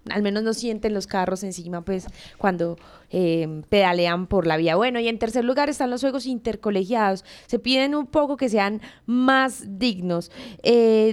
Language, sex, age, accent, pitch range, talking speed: Spanish, female, 20-39, Colombian, 195-245 Hz, 175 wpm